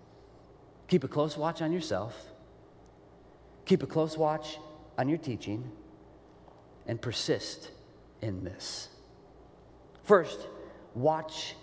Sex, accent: male, American